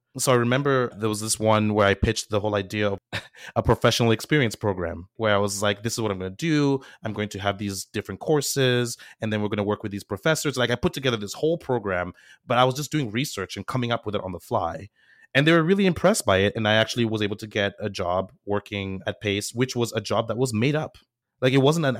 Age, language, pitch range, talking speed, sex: 30-49, English, 105-130 Hz, 265 wpm, male